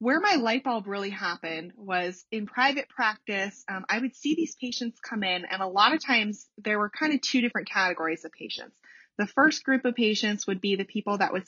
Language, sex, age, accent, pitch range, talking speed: English, female, 20-39, American, 185-230 Hz, 225 wpm